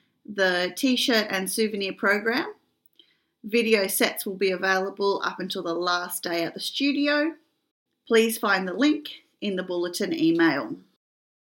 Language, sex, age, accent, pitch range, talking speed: English, female, 30-49, Australian, 195-315 Hz, 135 wpm